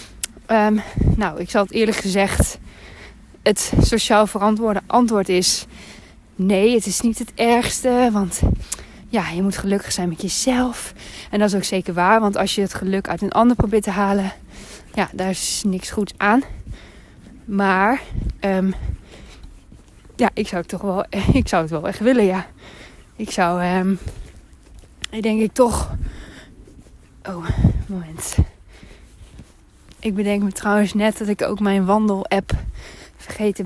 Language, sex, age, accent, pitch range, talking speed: Dutch, female, 20-39, Dutch, 185-220 Hz, 135 wpm